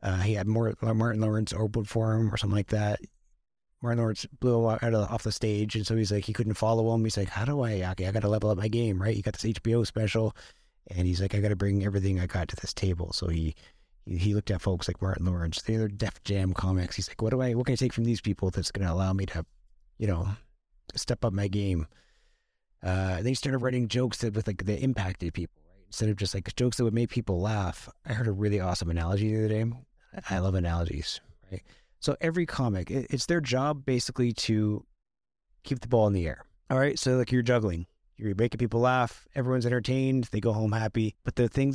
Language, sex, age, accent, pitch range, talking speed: English, male, 30-49, American, 95-120 Hz, 245 wpm